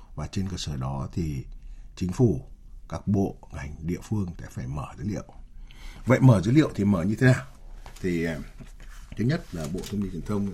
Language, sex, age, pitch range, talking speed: Vietnamese, male, 60-79, 80-110 Hz, 205 wpm